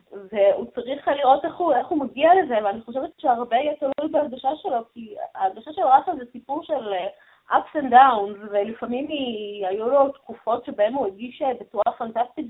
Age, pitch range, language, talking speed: 20-39, 210-275 Hz, Hebrew, 180 wpm